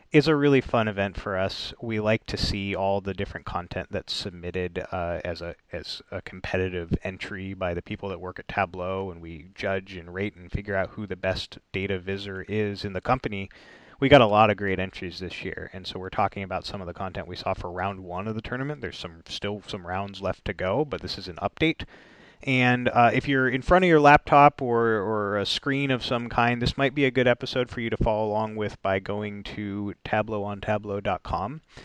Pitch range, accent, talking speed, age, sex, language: 95-115 Hz, American, 225 wpm, 30-49, male, English